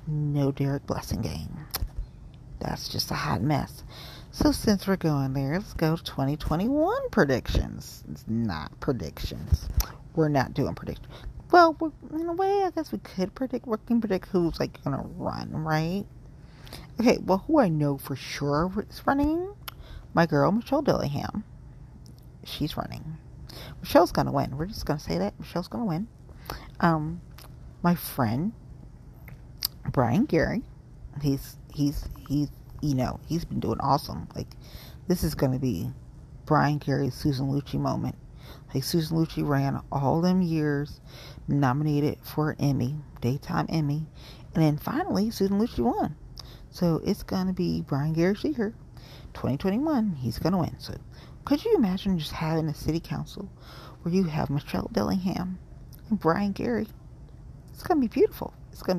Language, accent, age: English, American, 40-59